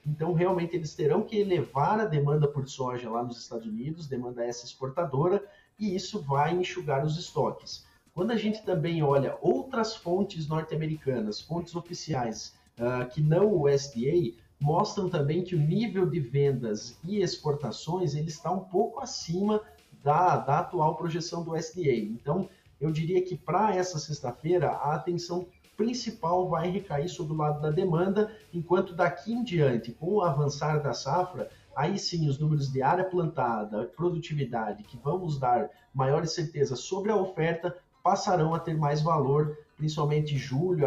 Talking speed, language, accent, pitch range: 155 wpm, Portuguese, Brazilian, 140-180 Hz